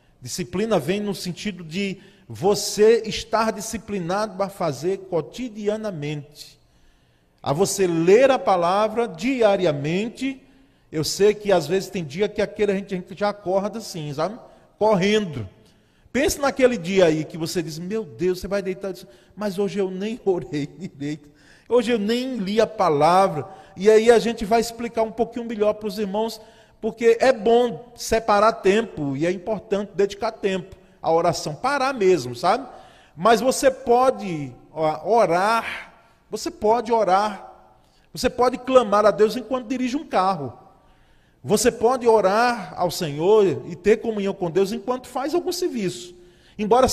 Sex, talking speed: male, 150 wpm